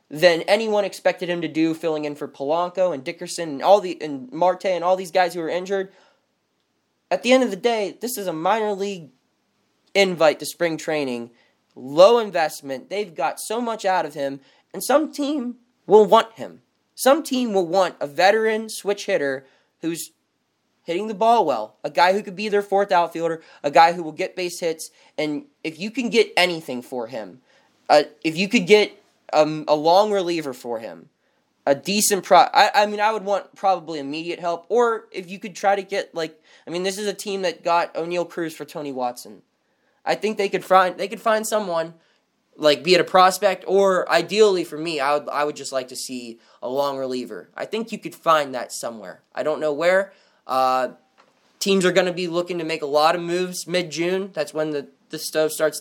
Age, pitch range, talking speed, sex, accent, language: 20-39, 155-200 Hz, 205 wpm, male, American, English